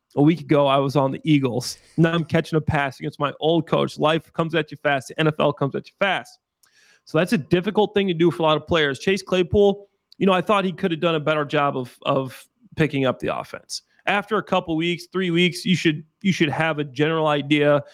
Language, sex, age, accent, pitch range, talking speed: English, male, 30-49, American, 145-180 Hz, 250 wpm